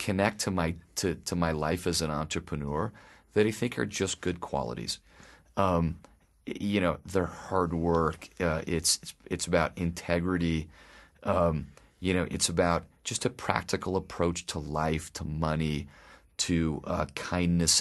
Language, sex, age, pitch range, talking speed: English, male, 30-49, 80-100 Hz, 150 wpm